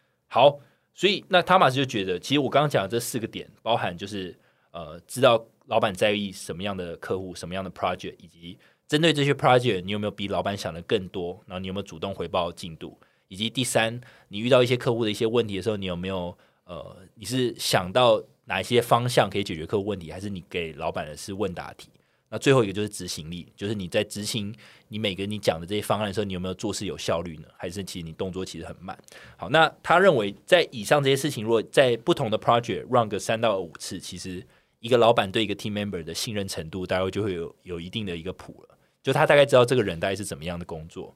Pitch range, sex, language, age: 95-120 Hz, male, Chinese, 20-39